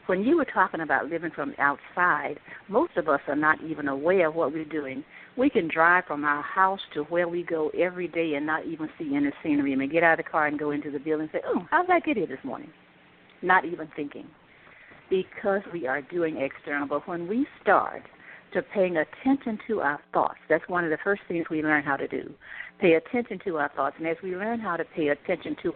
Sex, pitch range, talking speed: female, 155-230 Hz, 235 wpm